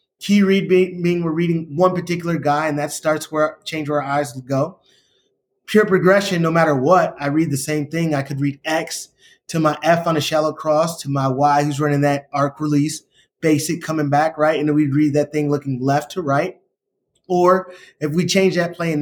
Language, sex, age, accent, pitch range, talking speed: English, male, 20-39, American, 150-185 Hz, 215 wpm